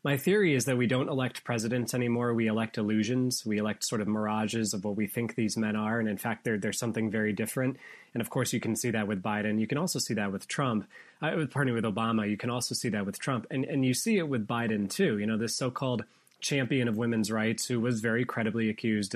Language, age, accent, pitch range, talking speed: English, 30-49, American, 110-130 Hz, 250 wpm